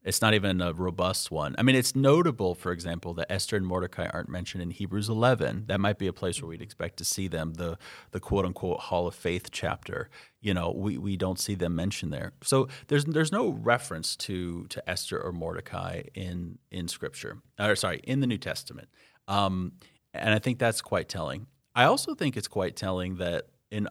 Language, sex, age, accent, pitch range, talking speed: English, male, 30-49, American, 90-115 Hz, 205 wpm